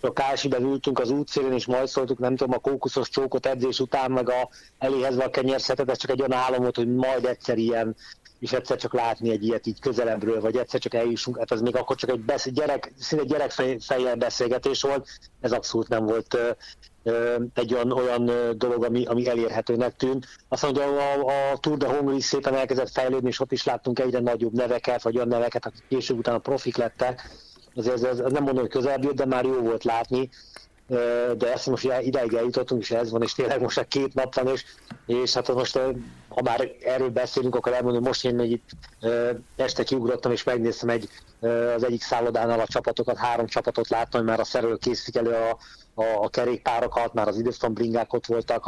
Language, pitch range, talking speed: Hungarian, 115-130 Hz, 200 wpm